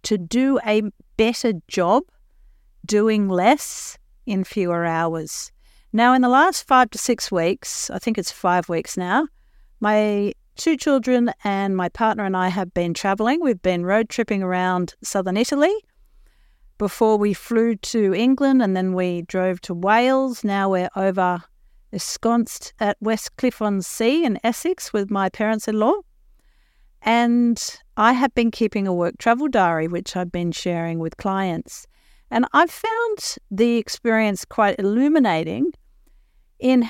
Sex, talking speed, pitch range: female, 145 wpm, 185-240 Hz